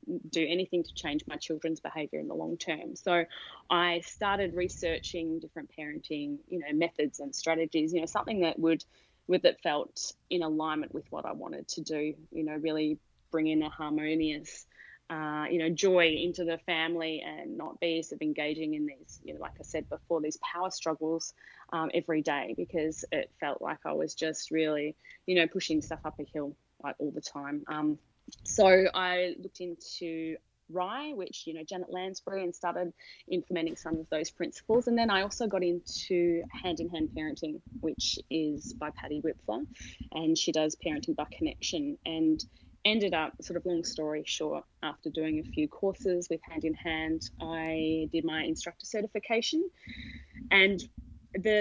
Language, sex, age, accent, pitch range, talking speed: English, female, 20-39, Australian, 155-185 Hz, 175 wpm